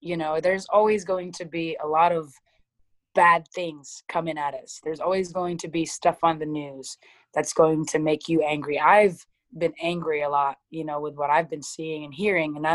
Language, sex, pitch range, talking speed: English, female, 145-170 Hz, 210 wpm